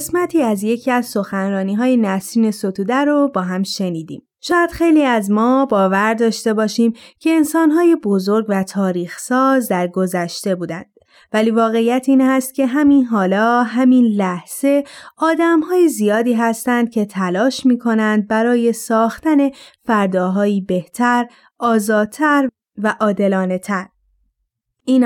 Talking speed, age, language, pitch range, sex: 120 wpm, 20-39, Persian, 200-265 Hz, female